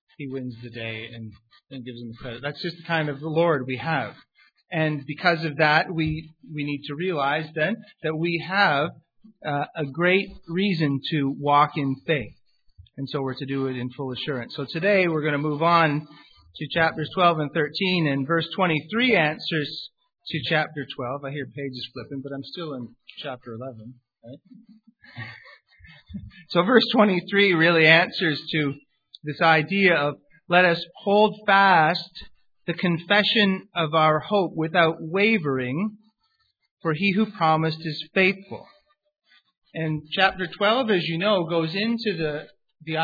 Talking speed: 160 wpm